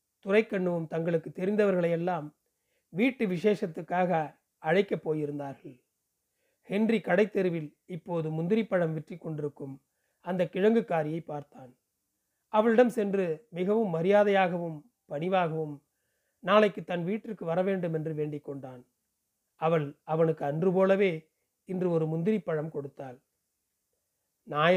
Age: 40-59